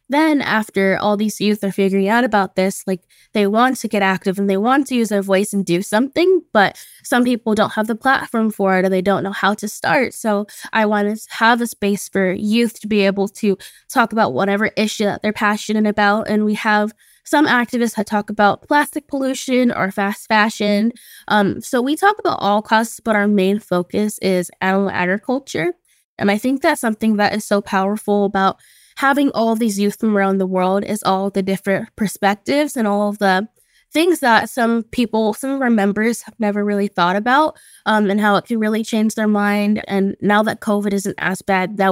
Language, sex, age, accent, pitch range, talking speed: English, female, 10-29, American, 195-230 Hz, 210 wpm